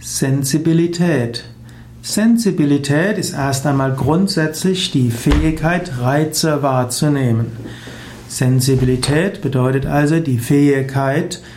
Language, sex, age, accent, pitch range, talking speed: German, male, 60-79, German, 125-165 Hz, 80 wpm